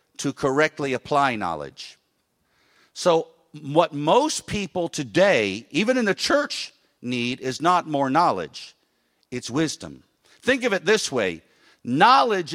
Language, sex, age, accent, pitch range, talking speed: English, male, 50-69, American, 130-190 Hz, 125 wpm